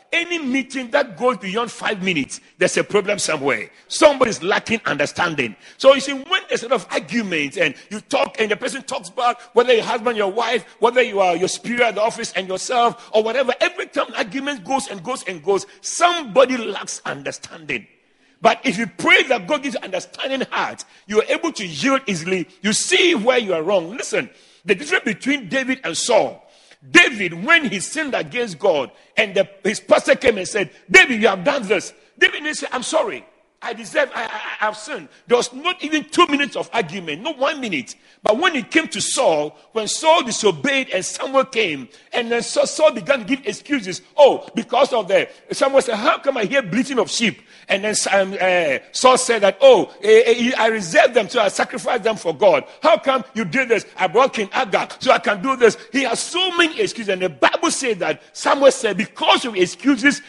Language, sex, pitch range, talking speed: English, male, 210-285 Hz, 205 wpm